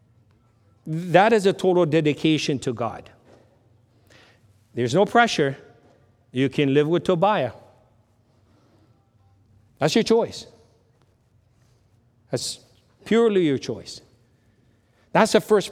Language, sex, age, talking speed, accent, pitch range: English, male, 50-69, 95 wpm, American, 115-165 Hz